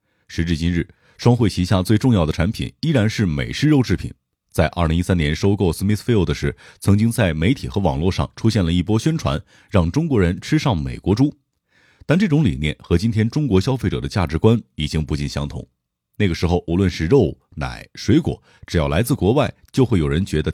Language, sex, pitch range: Chinese, male, 85-115 Hz